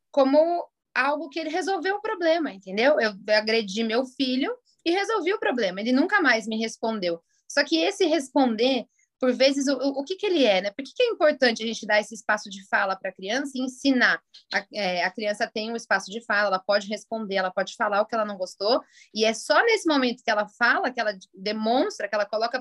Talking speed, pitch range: 225 wpm, 215-295 Hz